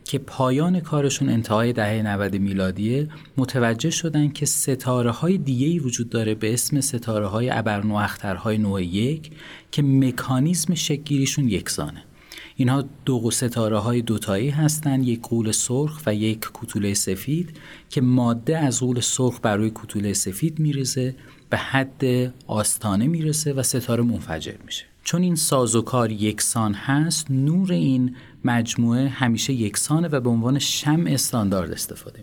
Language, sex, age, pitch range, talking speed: Persian, male, 30-49, 110-140 Hz, 140 wpm